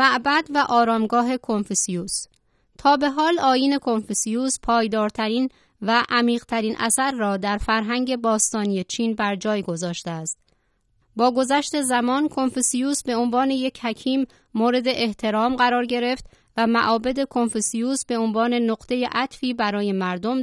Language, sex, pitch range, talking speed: Persian, female, 215-250 Hz, 125 wpm